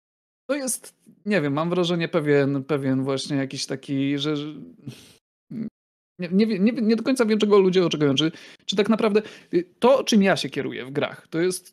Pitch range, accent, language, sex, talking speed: 140-185 Hz, native, Polish, male, 180 wpm